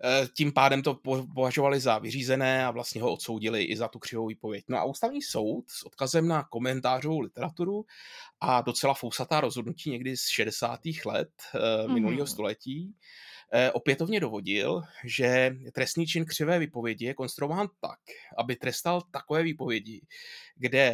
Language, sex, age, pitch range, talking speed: Czech, male, 20-39, 115-145 Hz, 140 wpm